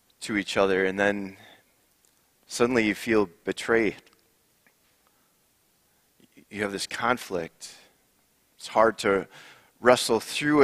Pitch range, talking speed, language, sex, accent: 105-125 Hz, 100 wpm, English, male, American